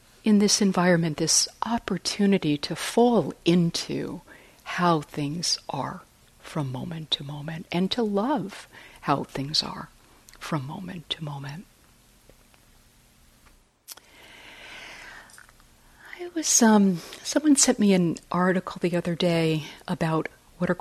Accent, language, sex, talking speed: American, English, female, 110 wpm